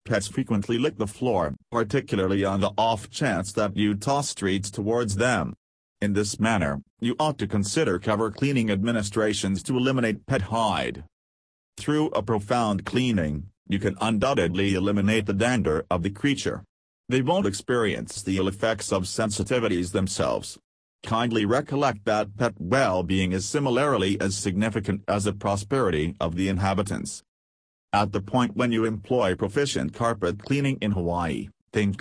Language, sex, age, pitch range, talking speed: English, male, 40-59, 95-120 Hz, 145 wpm